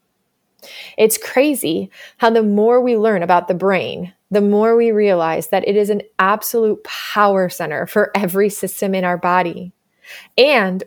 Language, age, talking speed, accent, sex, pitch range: English, 20-39, 155 wpm, American, female, 190-225 Hz